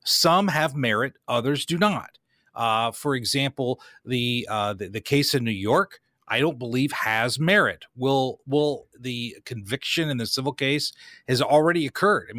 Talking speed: 165 wpm